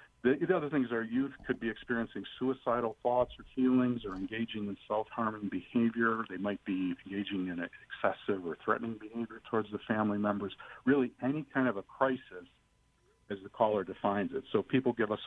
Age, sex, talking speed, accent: 50-69, male, 180 wpm, American